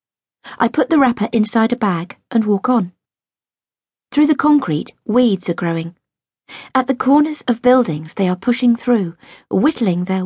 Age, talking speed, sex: 40-59, 160 wpm, female